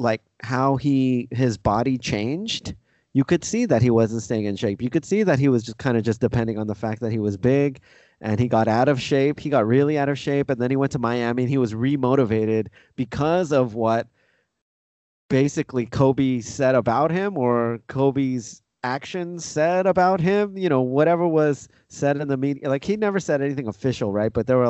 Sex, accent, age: male, American, 30-49